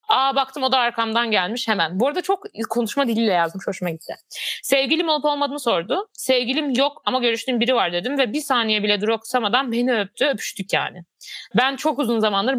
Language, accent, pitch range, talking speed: Turkish, native, 200-255 Hz, 190 wpm